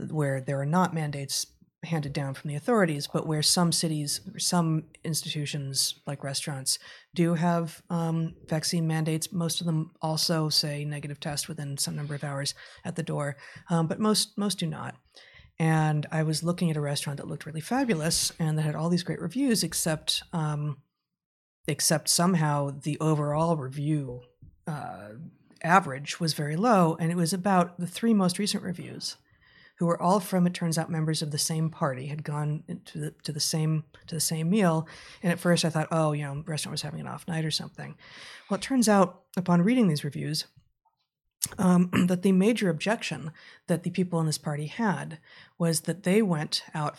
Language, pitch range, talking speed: English, 155-185 Hz, 190 wpm